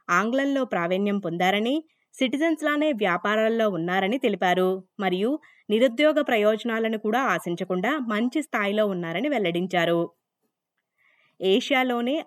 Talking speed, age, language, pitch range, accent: 85 wpm, 20-39, Telugu, 185-250 Hz, native